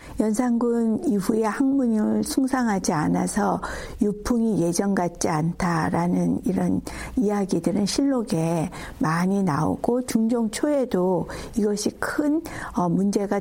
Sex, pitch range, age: female, 180-250 Hz, 60-79